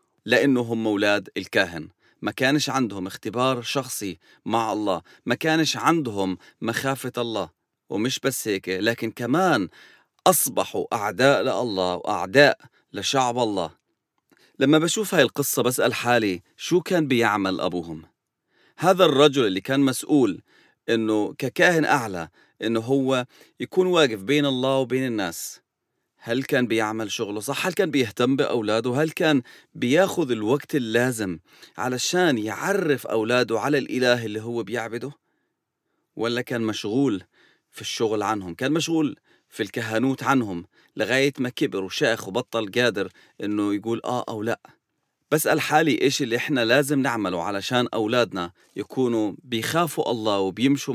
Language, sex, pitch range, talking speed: English, male, 110-140 Hz, 130 wpm